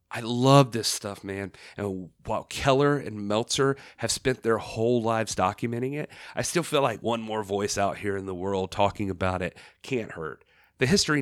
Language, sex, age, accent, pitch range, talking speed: English, male, 30-49, American, 95-125 Hz, 195 wpm